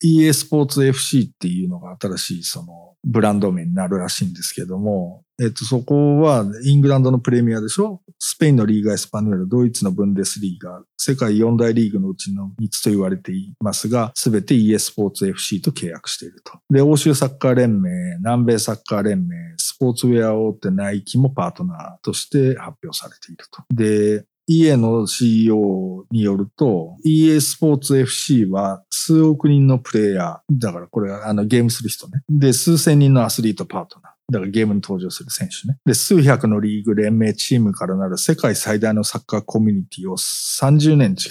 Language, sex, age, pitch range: Japanese, male, 50-69, 105-145 Hz